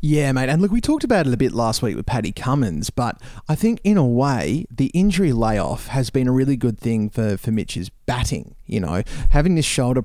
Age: 20-39